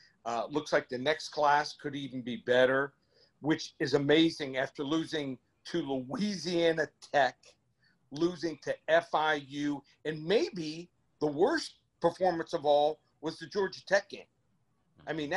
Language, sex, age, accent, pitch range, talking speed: English, male, 50-69, American, 135-170 Hz, 135 wpm